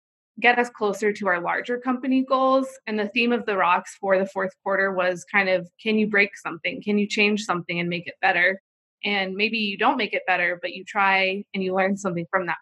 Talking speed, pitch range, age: 235 wpm, 185-220 Hz, 20-39